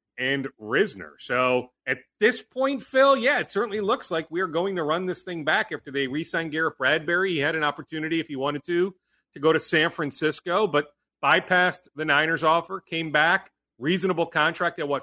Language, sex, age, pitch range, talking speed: English, male, 40-59, 145-195 Hz, 190 wpm